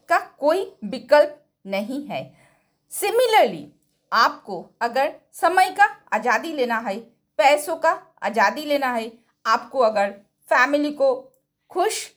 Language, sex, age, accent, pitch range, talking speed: Hindi, female, 50-69, native, 250-325 Hz, 115 wpm